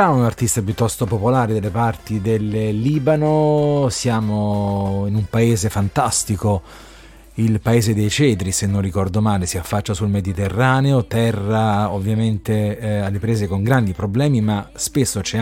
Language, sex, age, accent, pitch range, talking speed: Italian, male, 30-49, native, 100-120 Hz, 140 wpm